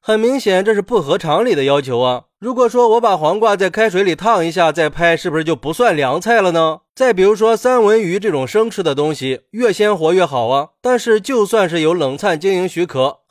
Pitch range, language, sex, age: 150-225 Hz, Chinese, male, 20-39